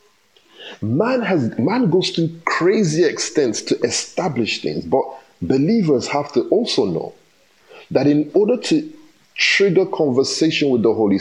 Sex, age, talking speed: male, 50-69, 135 wpm